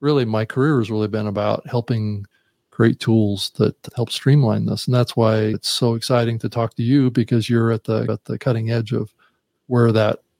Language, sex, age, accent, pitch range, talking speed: English, male, 40-59, American, 115-130 Hz, 200 wpm